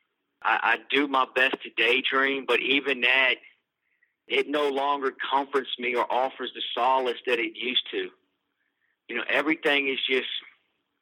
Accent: American